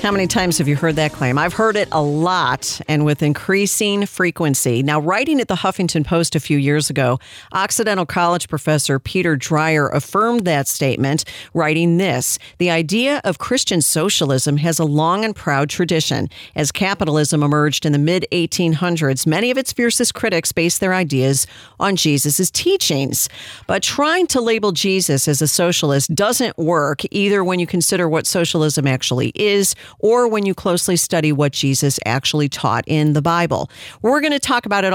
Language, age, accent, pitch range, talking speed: English, 50-69, American, 150-190 Hz, 175 wpm